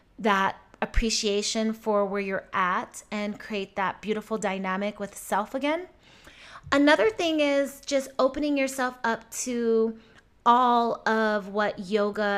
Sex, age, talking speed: female, 20-39, 125 wpm